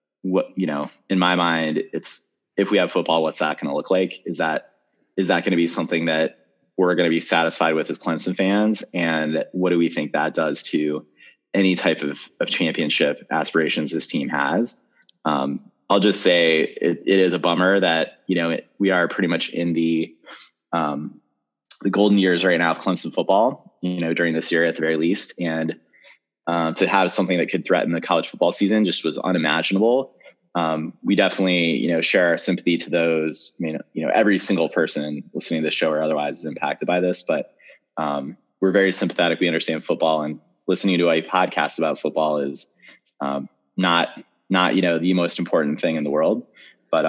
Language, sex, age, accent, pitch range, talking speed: English, male, 20-39, American, 80-90 Hz, 205 wpm